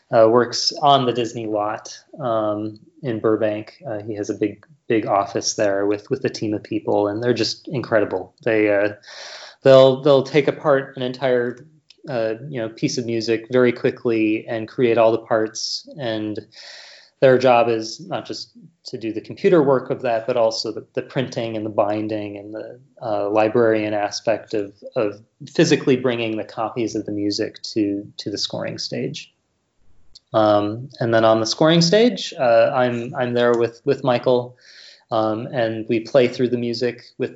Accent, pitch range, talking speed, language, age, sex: American, 105-125 Hz, 175 wpm, English, 30-49, male